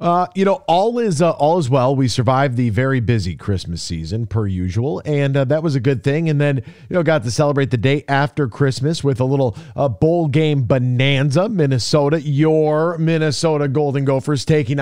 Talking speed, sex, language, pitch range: 200 wpm, male, English, 130-160 Hz